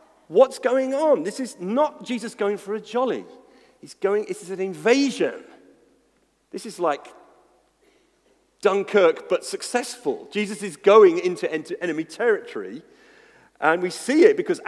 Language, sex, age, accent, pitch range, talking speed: English, male, 40-59, British, 210-310 Hz, 135 wpm